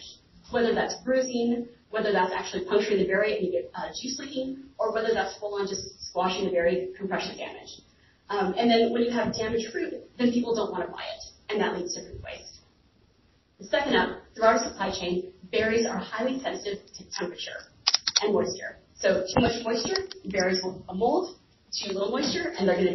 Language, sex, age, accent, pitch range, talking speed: English, female, 30-49, American, 195-255 Hz, 195 wpm